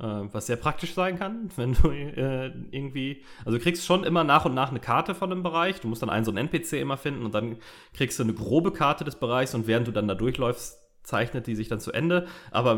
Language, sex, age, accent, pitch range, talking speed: German, male, 30-49, German, 110-140 Hz, 250 wpm